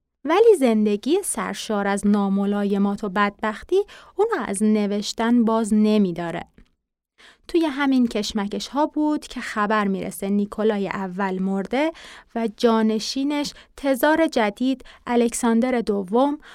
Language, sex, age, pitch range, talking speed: Persian, female, 30-49, 210-280 Hz, 105 wpm